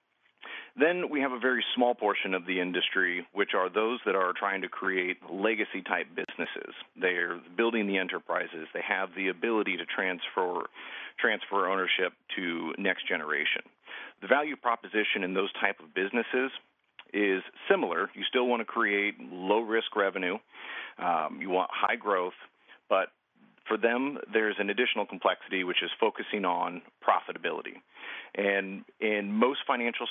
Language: English